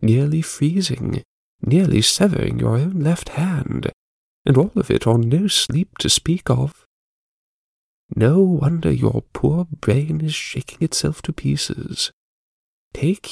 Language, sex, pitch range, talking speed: English, male, 115-160 Hz, 130 wpm